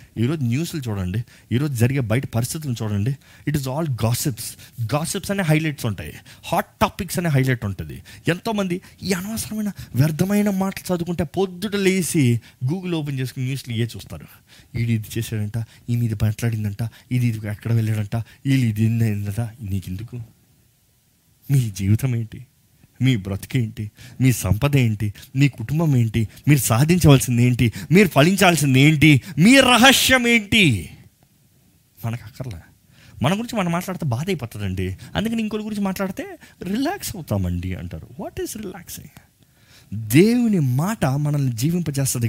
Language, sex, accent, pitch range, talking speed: Telugu, male, native, 115-170 Hz, 130 wpm